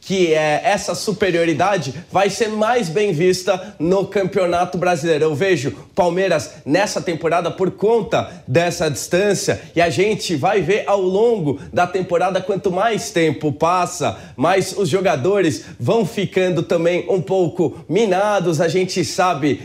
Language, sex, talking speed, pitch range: English, male, 140 wpm, 160-195 Hz